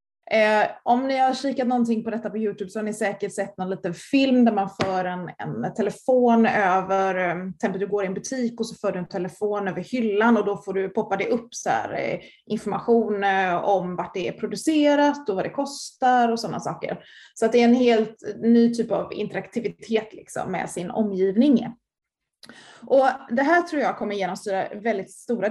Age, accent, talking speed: 20-39, native, 195 wpm